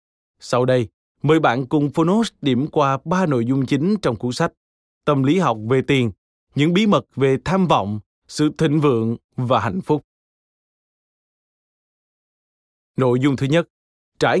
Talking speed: 155 wpm